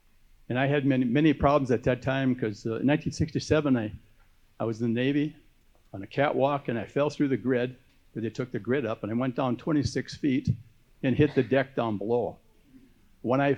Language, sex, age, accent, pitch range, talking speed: English, male, 60-79, American, 110-135 Hz, 210 wpm